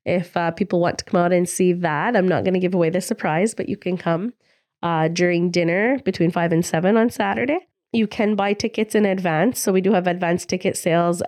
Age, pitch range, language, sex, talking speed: 20-39, 175-205 Hz, English, female, 235 wpm